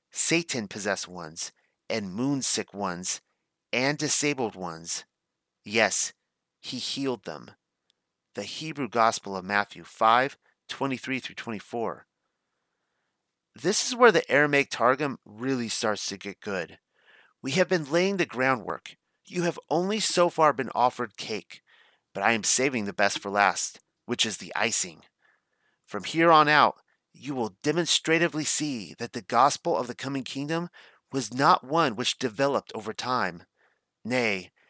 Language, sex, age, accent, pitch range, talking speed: English, male, 30-49, American, 110-160 Hz, 140 wpm